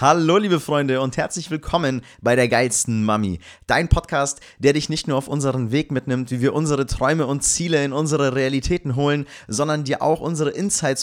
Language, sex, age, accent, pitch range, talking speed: German, male, 30-49, German, 115-150 Hz, 190 wpm